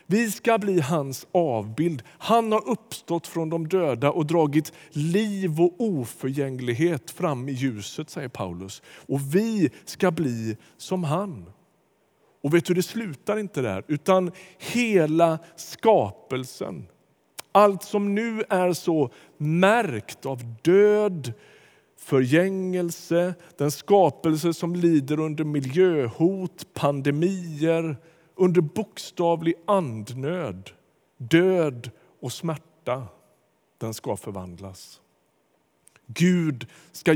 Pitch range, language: 125-180 Hz, Swedish